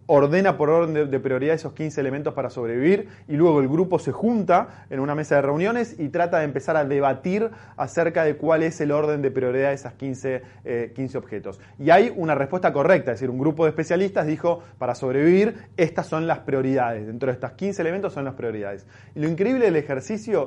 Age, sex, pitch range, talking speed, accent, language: 20-39, male, 130-170 Hz, 210 wpm, Argentinian, Spanish